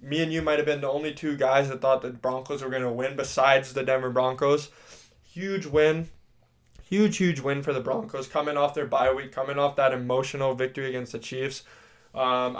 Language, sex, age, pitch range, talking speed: English, male, 20-39, 130-140 Hz, 210 wpm